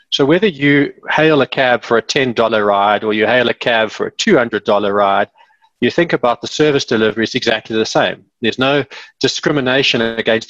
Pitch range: 120-160 Hz